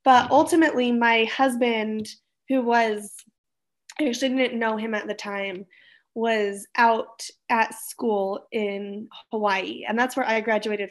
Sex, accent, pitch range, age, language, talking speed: female, American, 210-250 Hz, 20-39, English, 140 wpm